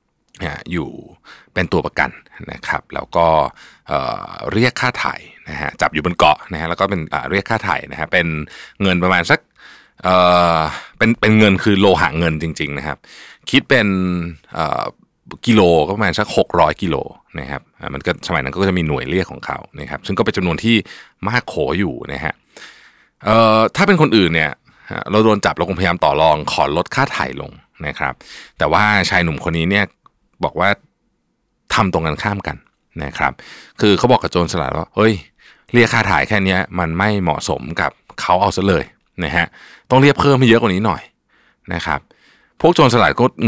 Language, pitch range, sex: Thai, 85-110 Hz, male